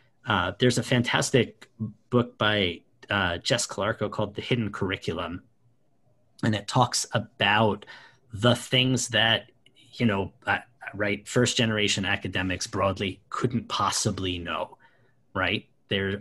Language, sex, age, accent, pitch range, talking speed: English, male, 30-49, American, 100-125 Hz, 115 wpm